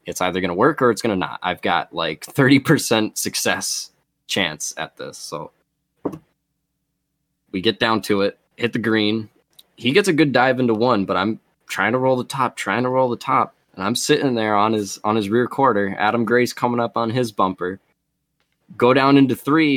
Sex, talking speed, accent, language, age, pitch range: male, 205 wpm, American, English, 20-39, 95-125 Hz